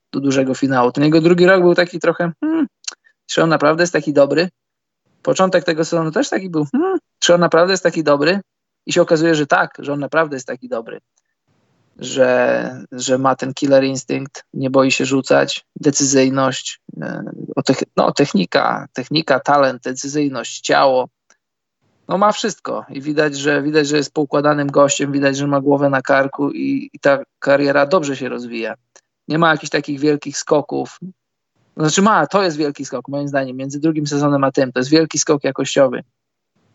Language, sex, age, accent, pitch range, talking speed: Polish, male, 20-39, native, 135-165 Hz, 175 wpm